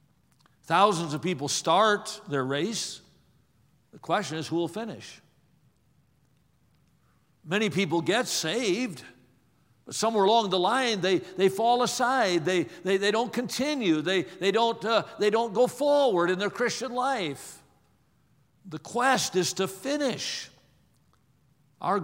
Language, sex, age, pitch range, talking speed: English, male, 60-79, 175-255 Hz, 130 wpm